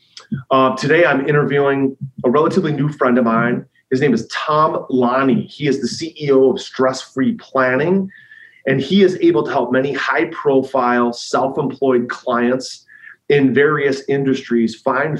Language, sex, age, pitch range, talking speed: English, male, 30-49, 125-150 Hz, 140 wpm